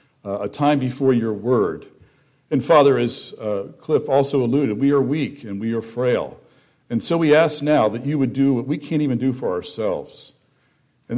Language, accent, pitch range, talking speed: English, American, 115-145 Hz, 200 wpm